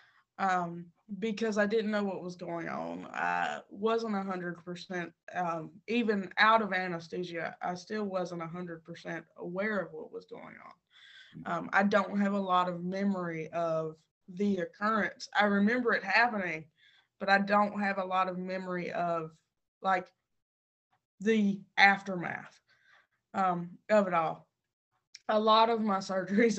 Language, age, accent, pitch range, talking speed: English, 20-39, American, 170-200 Hz, 150 wpm